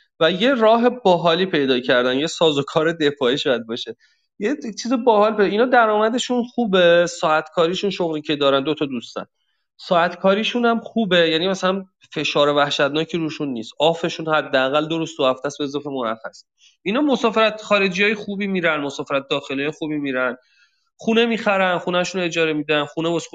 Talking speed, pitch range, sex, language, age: 150 wpm, 135-185 Hz, male, Persian, 30-49